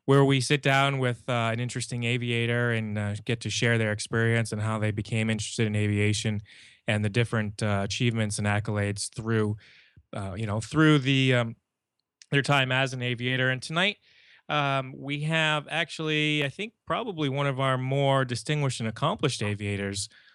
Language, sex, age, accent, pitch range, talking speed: English, male, 20-39, American, 110-140 Hz, 175 wpm